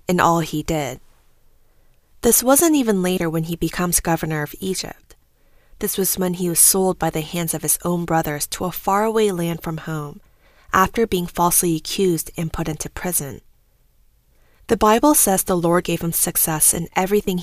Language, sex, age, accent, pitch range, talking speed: English, female, 20-39, American, 160-200 Hz, 175 wpm